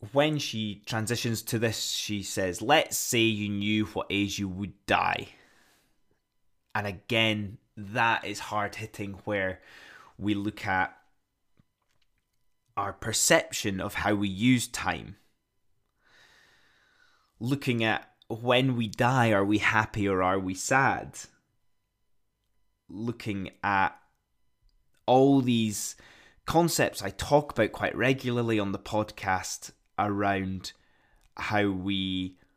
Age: 20-39